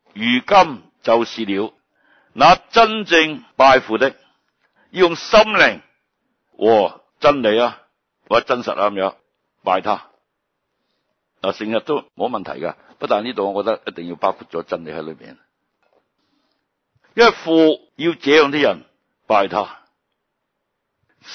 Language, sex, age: Chinese, male, 60-79